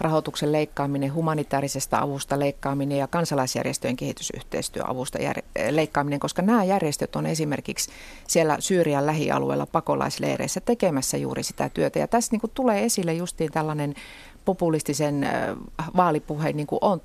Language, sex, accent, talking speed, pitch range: Finnish, female, native, 115 wpm, 140-185 Hz